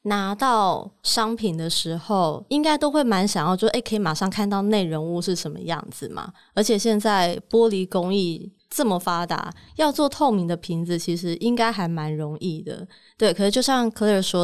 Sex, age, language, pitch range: female, 20-39, Chinese, 175-225 Hz